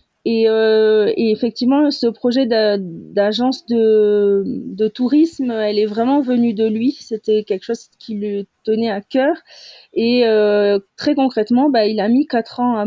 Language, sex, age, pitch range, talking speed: French, female, 30-49, 205-245 Hz, 170 wpm